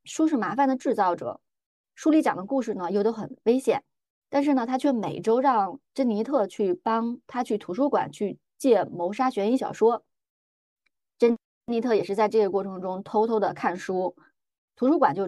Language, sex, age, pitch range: Chinese, female, 20-39, 195-240 Hz